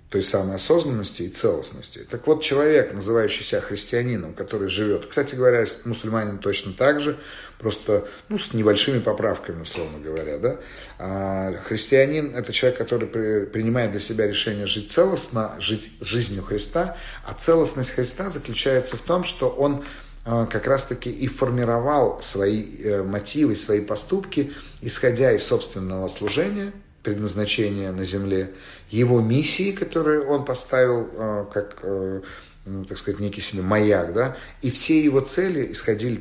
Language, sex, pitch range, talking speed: Russian, male, 100-135 Hz, 130 wpm